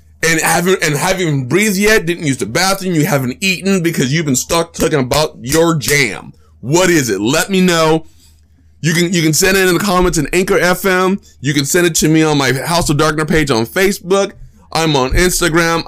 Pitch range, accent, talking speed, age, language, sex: 125-180 Hz, American, 215 wpm, 20-39, English, male